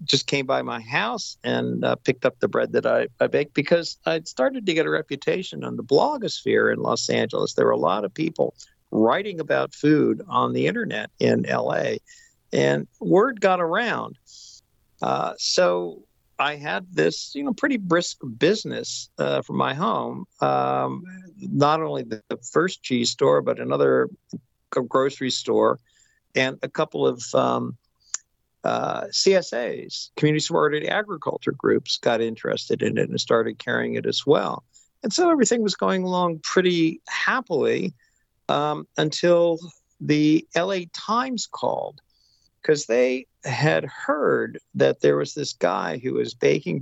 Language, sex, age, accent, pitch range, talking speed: English, male, 50-69, American, 110-180 Hz, 155 wpm